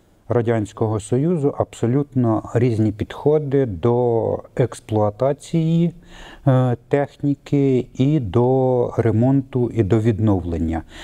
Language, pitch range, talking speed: Russian, 110-135 Hz, 75 wpm